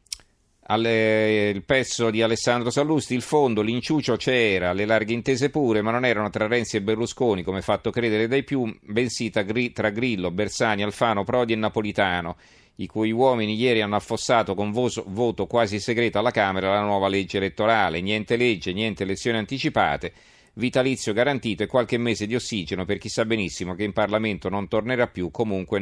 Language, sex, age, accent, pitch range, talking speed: Italian, male, 40-59, native, 100-120 Hz, 170 wpm